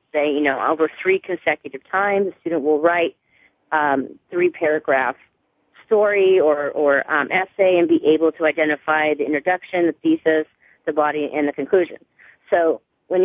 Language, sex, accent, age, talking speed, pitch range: English, female, American, 40-59, 160 wpm, 155-190 Hz